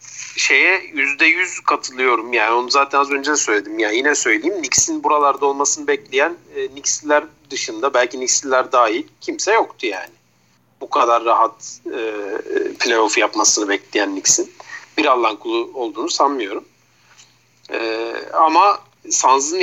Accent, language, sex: native, Turkish, male